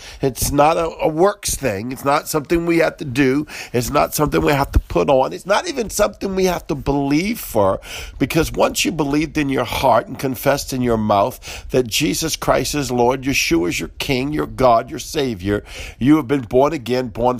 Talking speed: 210 wpm